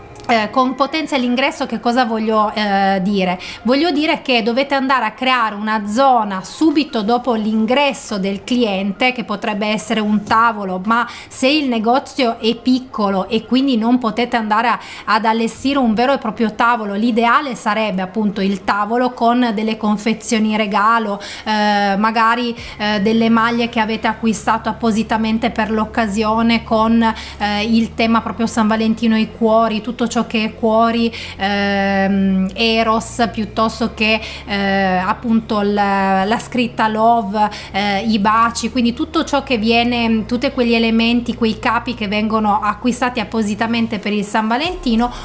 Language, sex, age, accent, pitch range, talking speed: Italian, female, 30-49, native, 215-245 Hz, 145 wpm